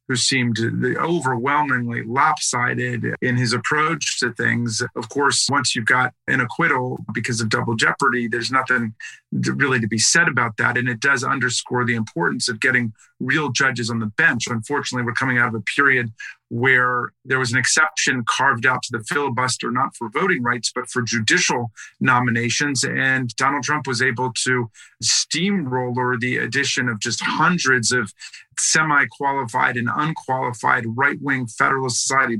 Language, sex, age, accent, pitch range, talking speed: English, male, 40-59, American, 120-140 Hz, 155 wpm